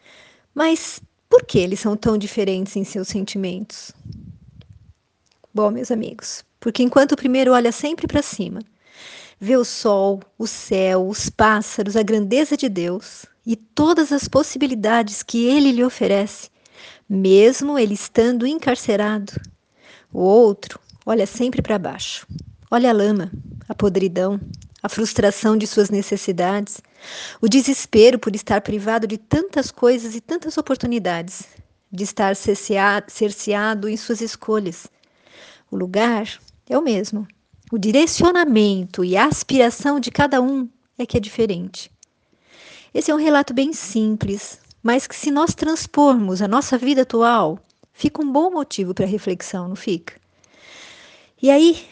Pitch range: 200-260 Hz